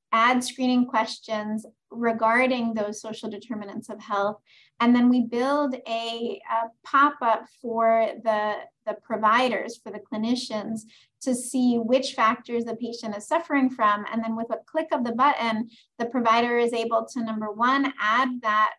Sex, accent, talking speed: female, American, 155 wpm